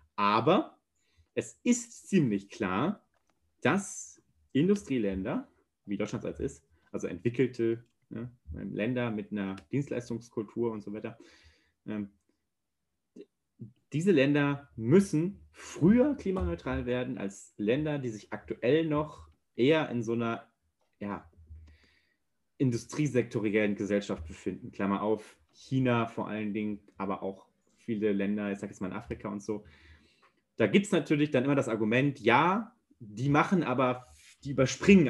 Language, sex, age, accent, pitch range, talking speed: German, male, 30-49, German, 105-135 Hz, 125 wpm